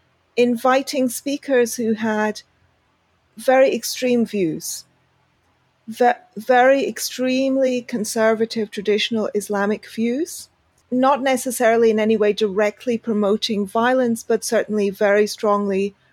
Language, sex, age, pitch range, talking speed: English, female, 40-59, 215-255 Hz, 95 wpm